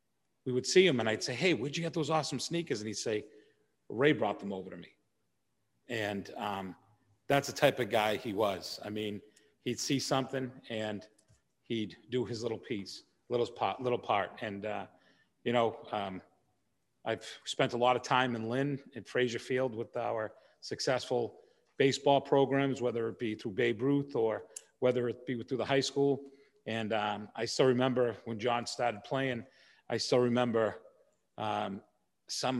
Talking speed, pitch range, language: 175 wpm, 110-130 Hz, English